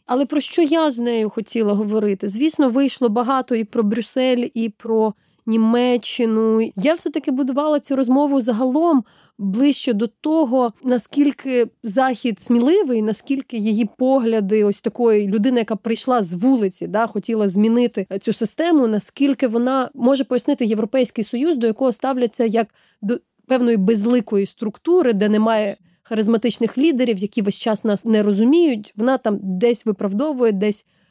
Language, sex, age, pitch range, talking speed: Ukrainian, female, 30-49, 215-260 Hz, 140 wpm